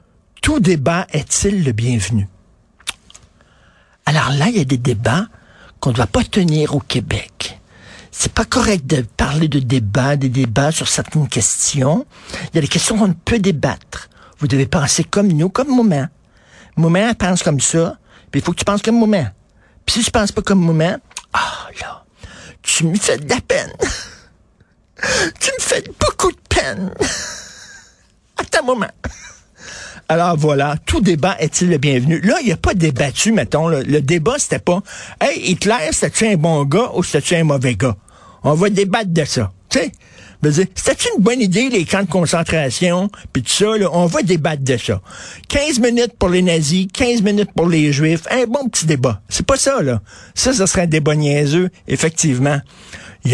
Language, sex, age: French, male, 60-79